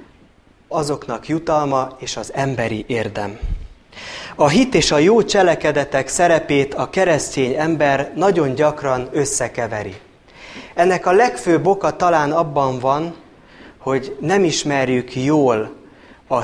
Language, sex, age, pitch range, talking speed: Hungarian, male, 30-49, 125-170 Hz, 115 wpm